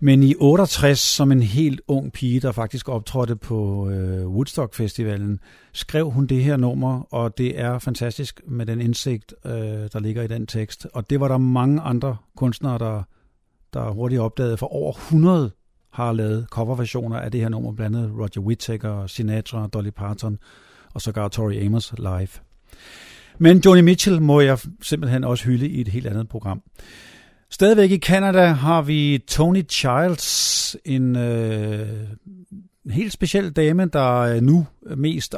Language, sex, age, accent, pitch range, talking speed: Danish, male, 50-69, native, 115-145 Hz, 160 wpm